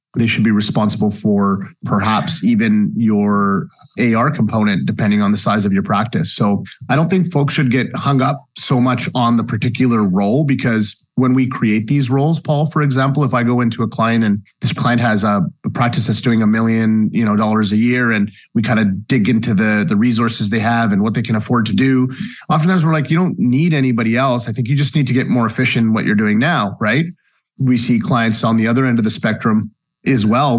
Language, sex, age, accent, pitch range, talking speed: English, male, 30-49, American, 110-135 Hz, 225 wpm